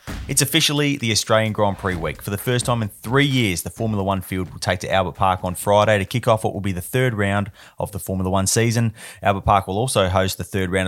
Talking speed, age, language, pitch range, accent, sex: 260 wpm, 20-39, English, 95-115 Hz, Australian, male